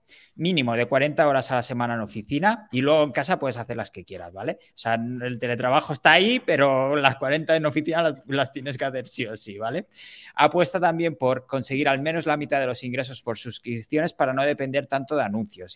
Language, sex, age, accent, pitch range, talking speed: Spanish, male, 20-39, Spanish, 120-150 Hz, 215 wpm